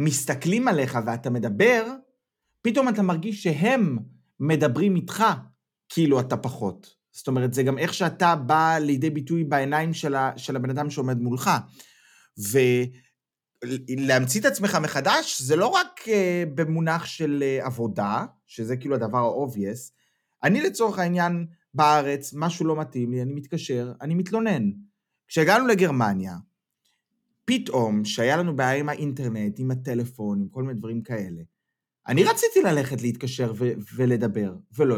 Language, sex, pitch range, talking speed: Hebrew, male, 125-175 Hz, 130 wpm